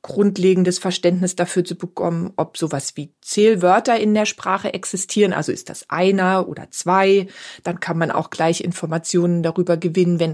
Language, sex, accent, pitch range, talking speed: English, female, German, 175-210 Hz, 165 wpm